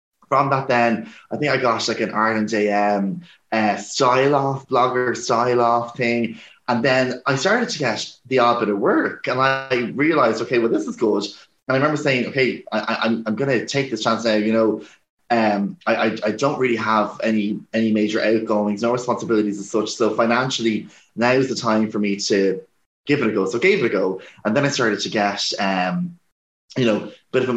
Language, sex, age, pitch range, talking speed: English, male, 20-39, 105-130 Hz, 210 wpm